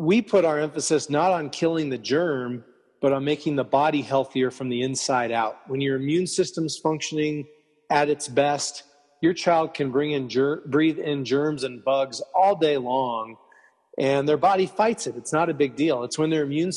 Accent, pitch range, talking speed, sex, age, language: American, 135-155 Hz, 195 wpm, male, 30-49, English